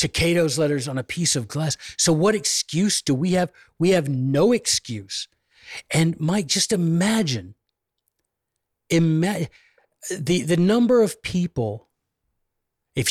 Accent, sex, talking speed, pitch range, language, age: American, male, 130 wpm, 120-165 Hz, English, 40-59